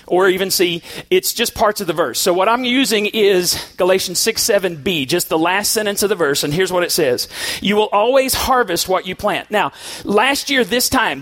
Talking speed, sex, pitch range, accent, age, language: 220 wpm, male, 180-240 Hz, American, 40-59, English